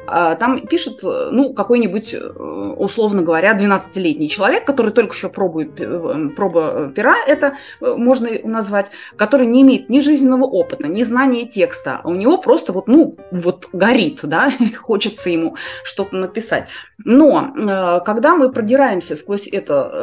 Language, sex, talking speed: Russian, female, 130 wpm